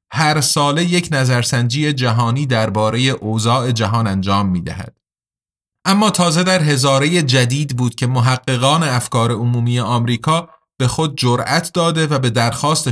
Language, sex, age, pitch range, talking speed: Persian, male, 30-49, 115-155 Hz, 135 wpm